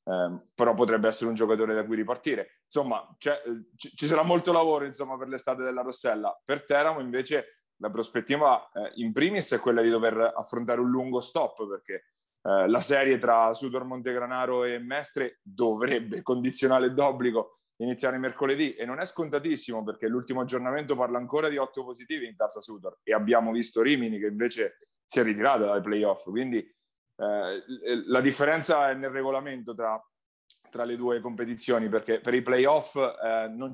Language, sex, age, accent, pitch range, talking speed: Italian, male, 30-49, native, 120-145 Hz, 170 wpm